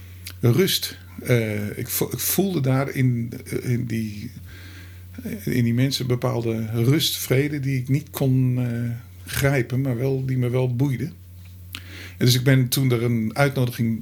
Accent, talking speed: Dutch, 155 wpm